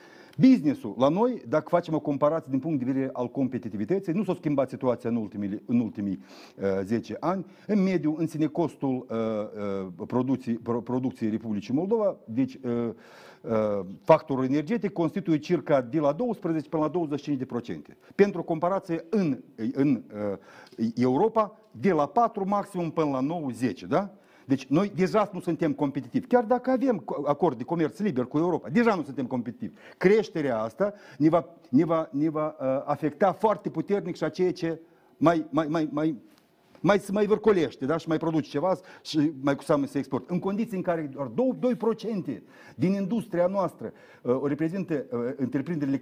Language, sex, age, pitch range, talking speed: Romanian, male, 50-69, 125-185 Hz, 155 wpm